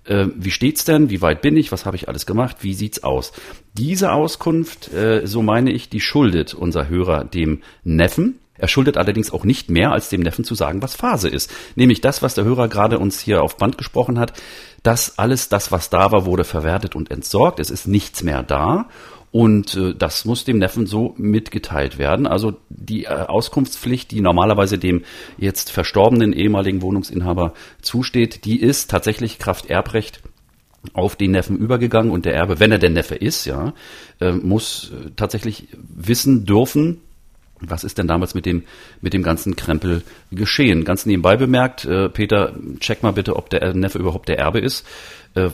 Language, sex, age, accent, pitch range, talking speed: German, male, 40-59, German, 90-115 Hz, 180 wpm